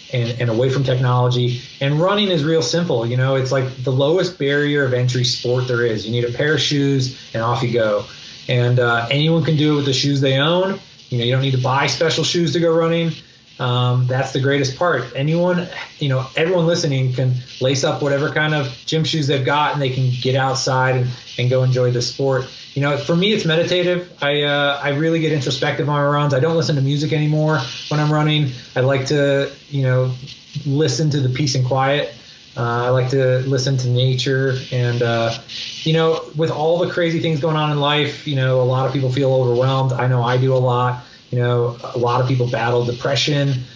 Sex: male